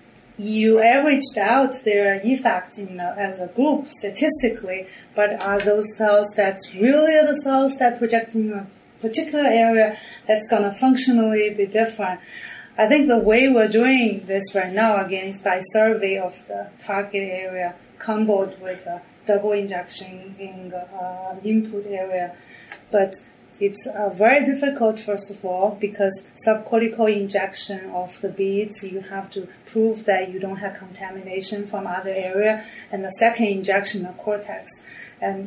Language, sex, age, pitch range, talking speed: English, female, 30-49, 195-225 Hz, 155 wpm